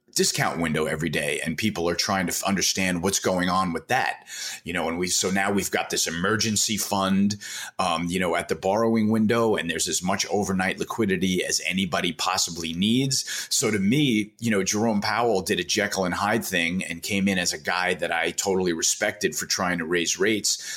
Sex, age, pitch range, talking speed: male, 30-49, 90-110 Hz, 210 wpm